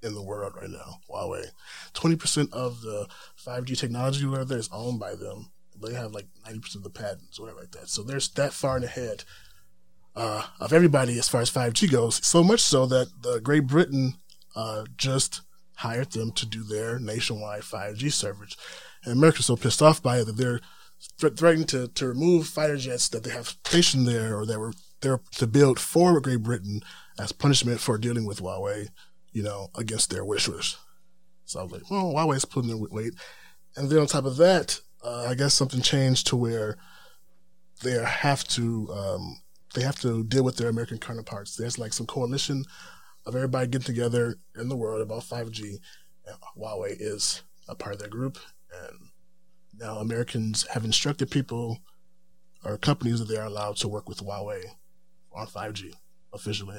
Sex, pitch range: male, 110-140 Hz